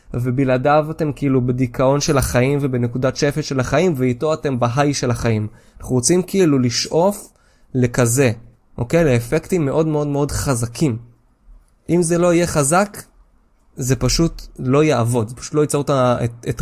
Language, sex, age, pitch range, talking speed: Hebrew, male, 20-39, 120-150 Hz, 150 wpm